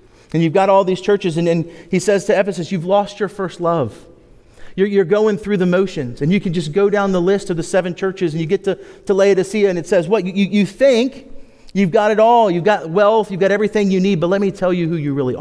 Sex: male